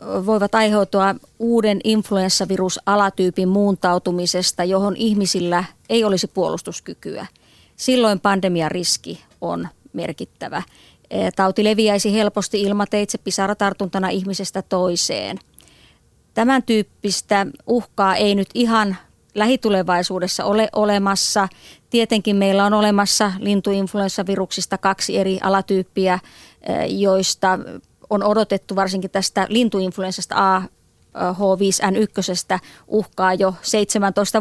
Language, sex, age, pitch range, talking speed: Finnish, female, 30-49, 190-215 Hz, 80 wpm